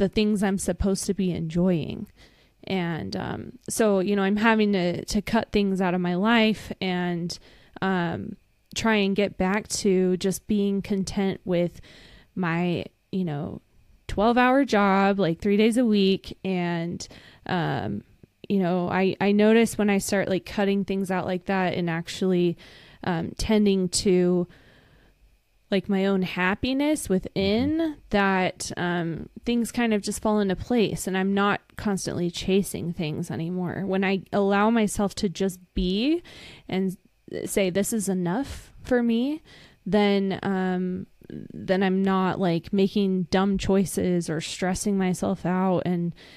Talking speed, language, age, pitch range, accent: 150 wpm, English, 20-39, 180-205 Hz, American